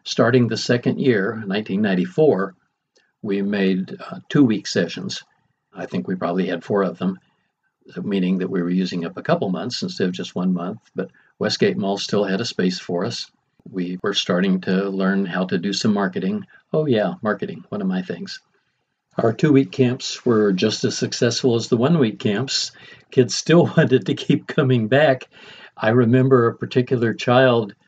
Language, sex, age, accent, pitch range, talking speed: English, male, 60-79, American, 110-185 Hz, 175 wpm